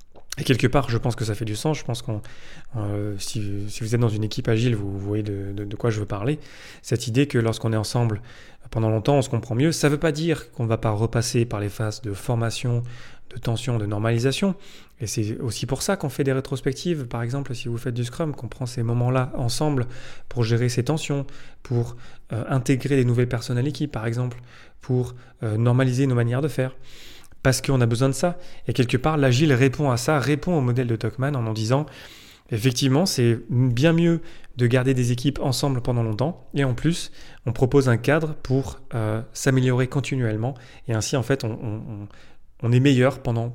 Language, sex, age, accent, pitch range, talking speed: French, male, 30-49, French, 115-135 Hz, 215 wpm